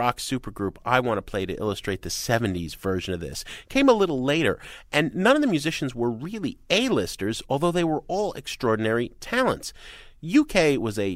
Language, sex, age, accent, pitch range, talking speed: English, male, 30-49, American, 95-135 Hz, 175 wpm